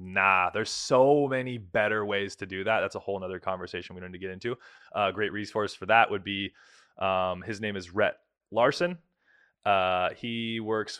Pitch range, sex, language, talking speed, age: 105-155 Hz, male, English, 190 wpm, 20-39